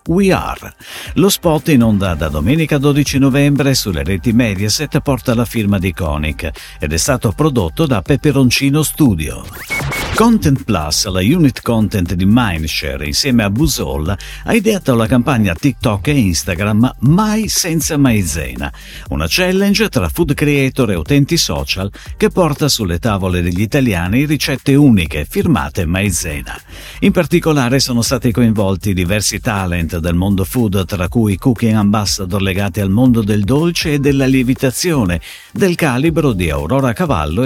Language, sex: Italian, male